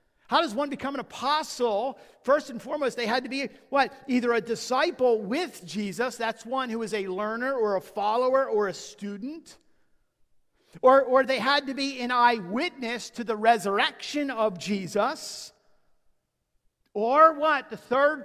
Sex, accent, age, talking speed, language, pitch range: male, American, 50-69, 160 wpm, English, 205-275 Hz